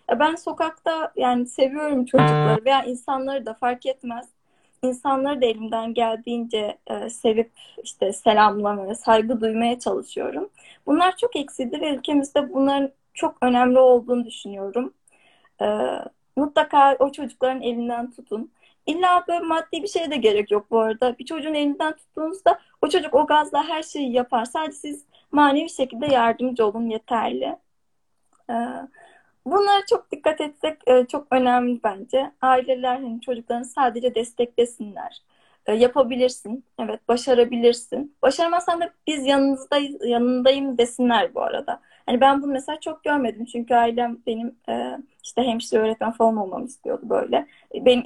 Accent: native